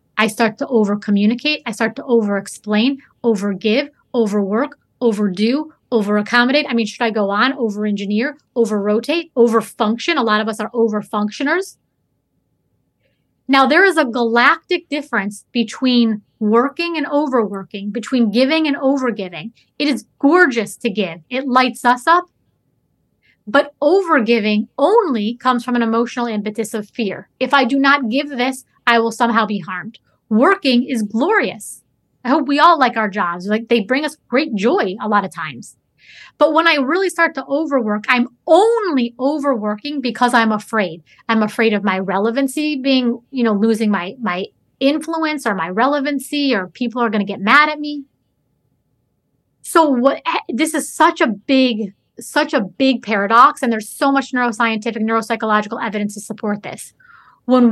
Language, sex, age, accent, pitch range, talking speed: English, female, 30-49, American, 215-280 Hz, 165 wpm